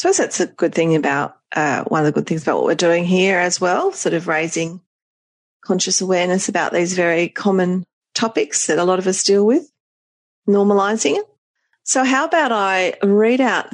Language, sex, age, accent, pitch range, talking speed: English, female, 40-59, Australian, 165-215 Hz, 195 wpm